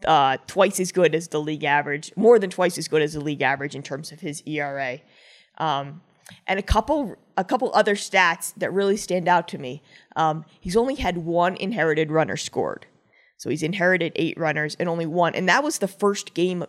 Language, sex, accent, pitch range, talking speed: English, female, American, 155-195 Hz, 210 wpm